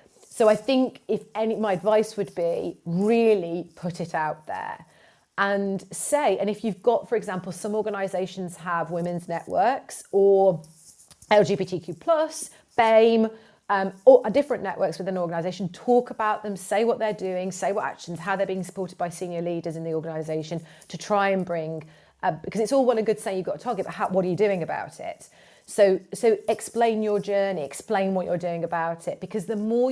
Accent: British